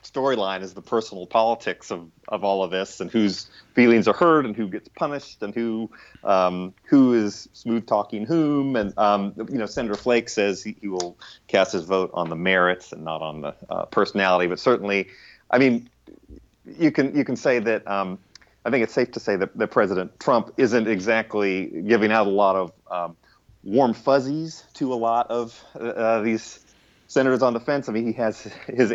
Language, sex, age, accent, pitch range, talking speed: English, male, 30-49, American, 95-120 Hz, 195 wpm